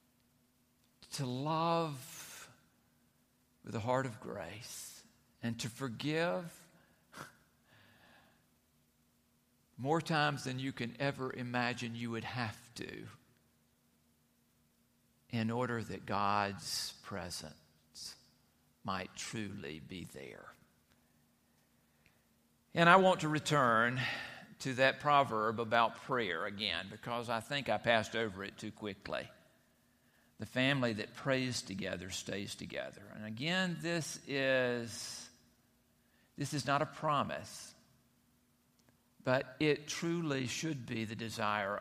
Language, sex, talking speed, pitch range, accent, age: English, male, 105 wpm, 105-140 Hz, American, 50-69